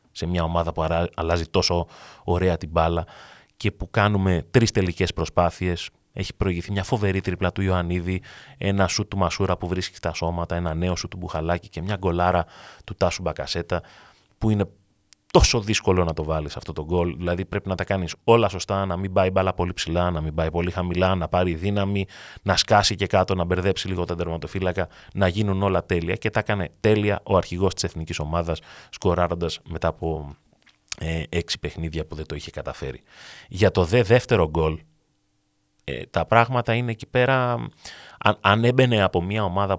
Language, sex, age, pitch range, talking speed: Greek, male, 30-49, 85-100 Hz, 180 wpm